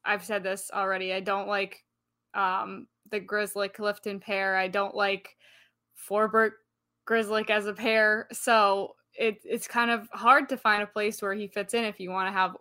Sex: female